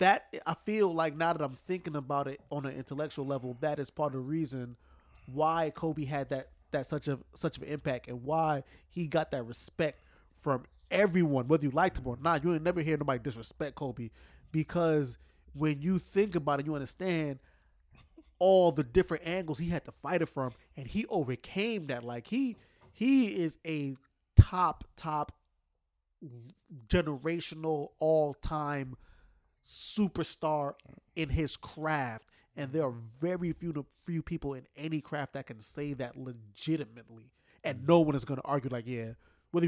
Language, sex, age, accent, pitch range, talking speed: English, male, 20-39, American, 135-175 Hz, 170 wpm